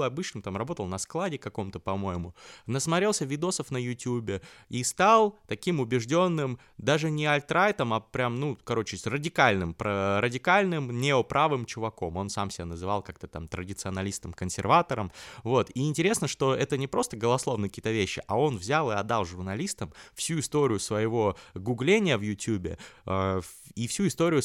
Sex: male